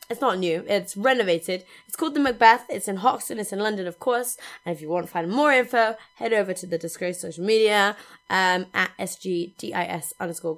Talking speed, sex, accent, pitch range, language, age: 205 wpm, female, British, 190-275 Hz, English, 20-39